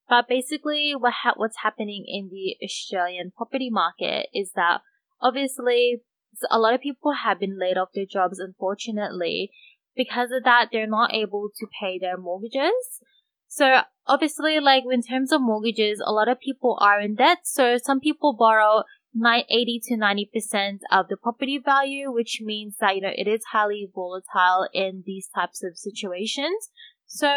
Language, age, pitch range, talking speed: English, 10-29, 205-265 Hz, 160 wpm